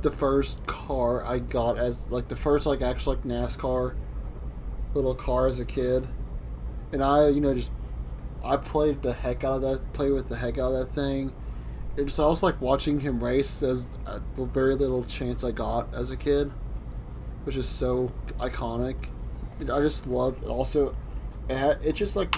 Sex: male